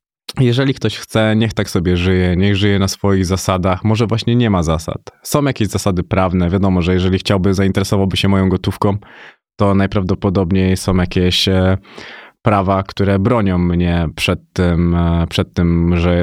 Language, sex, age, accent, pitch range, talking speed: Polish, male, 20-39, native, 95-110 Hz, 155 wpm